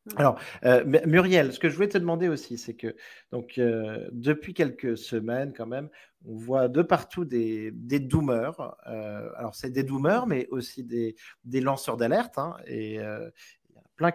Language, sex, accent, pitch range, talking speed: French, male, French, 120-160 Hz, 175 wpm